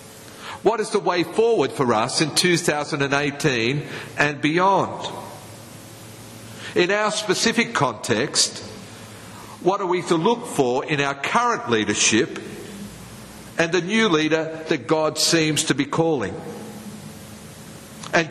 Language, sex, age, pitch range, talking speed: English, male, 50-69, 130-180 Hz, 120 wpm